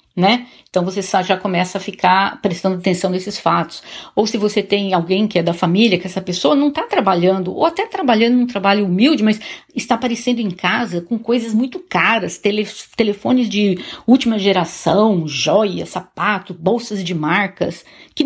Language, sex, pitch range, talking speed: Portuguese, female, 190-235 Hz, 175 wpm